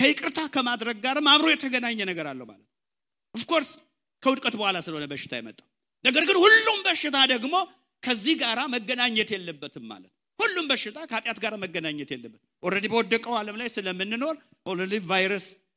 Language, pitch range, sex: English, 160-250 Hz, male